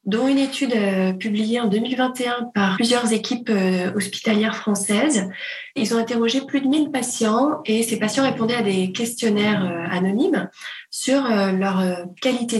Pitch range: 200-245 Hz